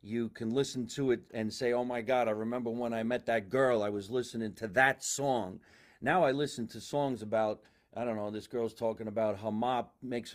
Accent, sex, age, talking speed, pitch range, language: American, male, 40-59, 225 wpm, 115-175 Hz, English